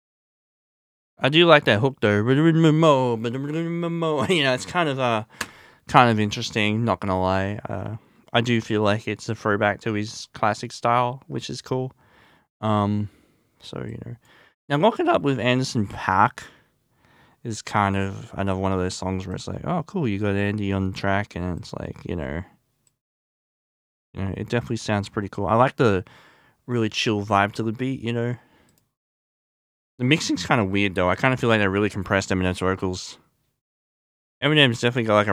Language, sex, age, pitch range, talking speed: English, male, 20-39, 95-125 Hz, 180 wpm